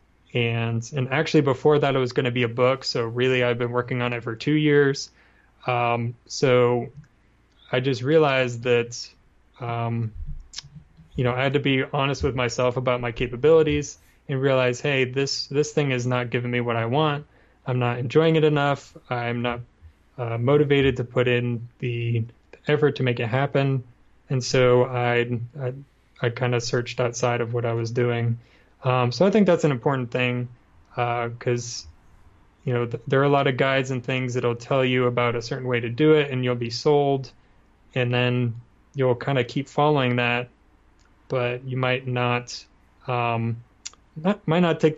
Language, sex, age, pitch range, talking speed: English, male, 20-39, 120-135 Hz, 185 wpm